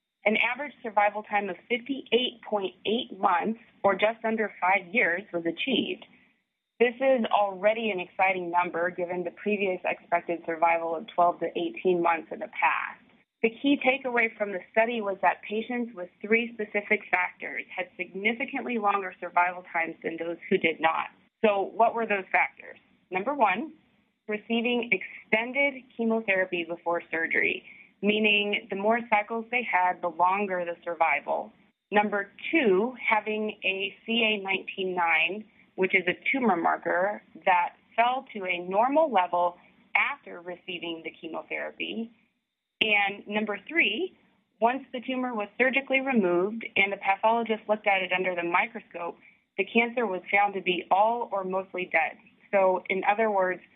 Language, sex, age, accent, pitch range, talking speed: English, female, 30-49, American, 180-230 Hz, 145 wpm